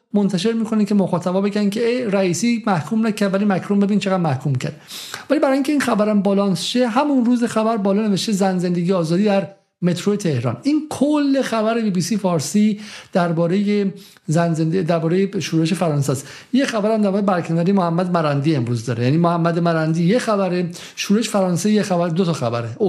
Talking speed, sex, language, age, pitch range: 175 wpm, male, Persian, 50-69, 165-210 Hz